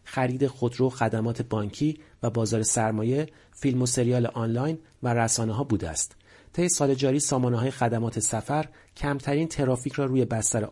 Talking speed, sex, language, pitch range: 155 wpm, male, Persian, 110-145 Hz